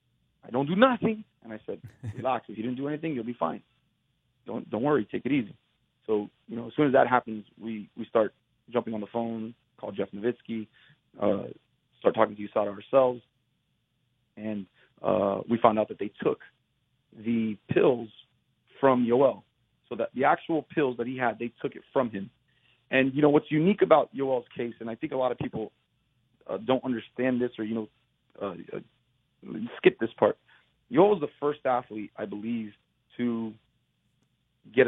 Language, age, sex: English, 30-49, male